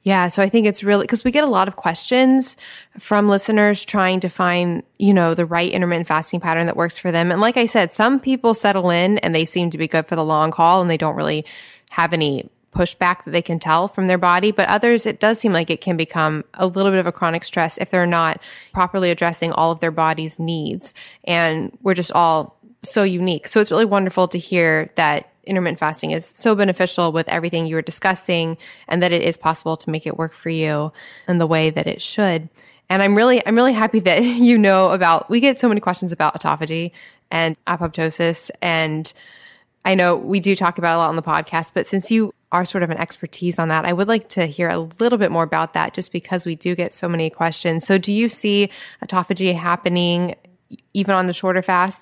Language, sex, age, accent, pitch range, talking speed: English, female, 20-39, American, 165-195 Hz, 230 wpm